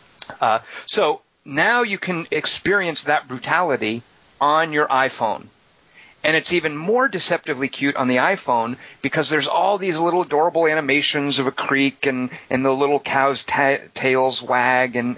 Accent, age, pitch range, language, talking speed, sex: American, 30-49, 115-140 Hz, English, 155 wpm, male